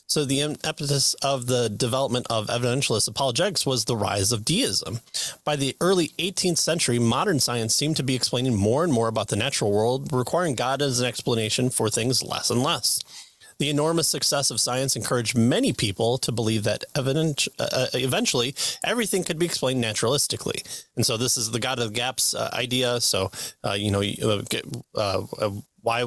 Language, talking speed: English, 190 wpm